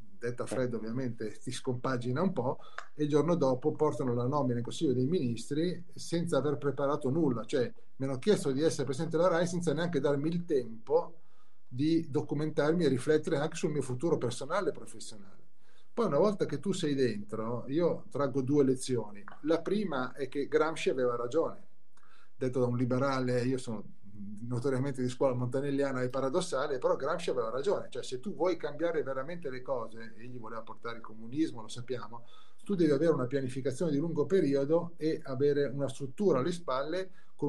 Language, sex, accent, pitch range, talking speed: Italian, male, native, 125-160 Hz, 180 wpm